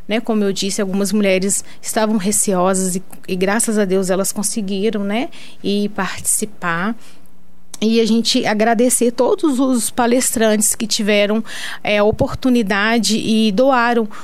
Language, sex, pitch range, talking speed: Portuguese, female, 200-235 Hz, 120 wpm